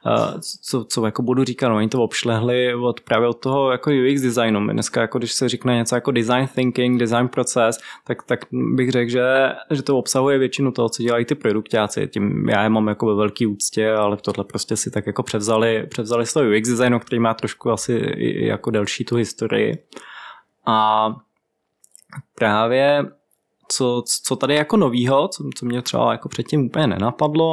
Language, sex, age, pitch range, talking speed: Czech, male, 20-39, 110-125 Hz, 185 wpm